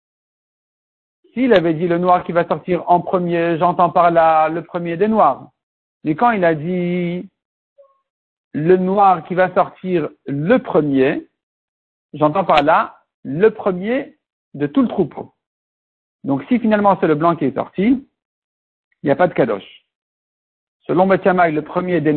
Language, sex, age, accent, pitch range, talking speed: French, male, 60-79, French, 160-210 Hz, 155 wpm